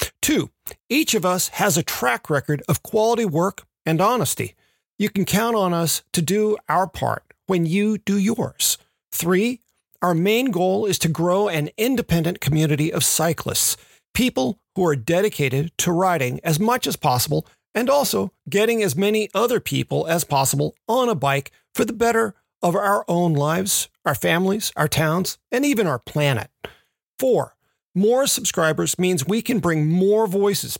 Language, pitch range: English, 160-215 Hz